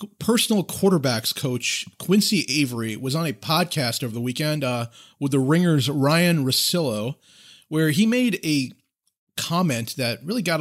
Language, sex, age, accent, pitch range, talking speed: English, male, 40-59, American, 130-185 Hz, 145 wpm